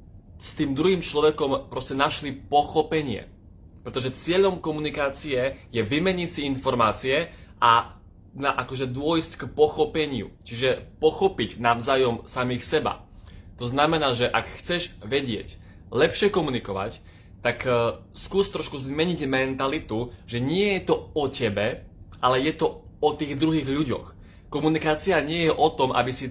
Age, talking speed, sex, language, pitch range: 20-39, 130 wpm, male, Slovak, 115-150 Hz